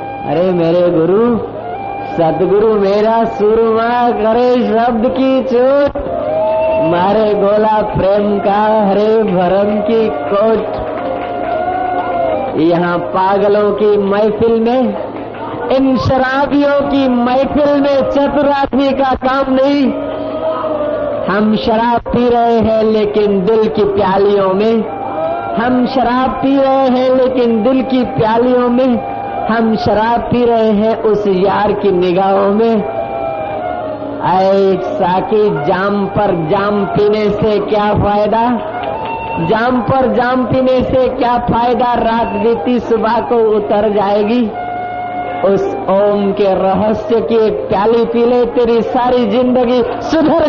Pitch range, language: 200-255 Hz, Hindi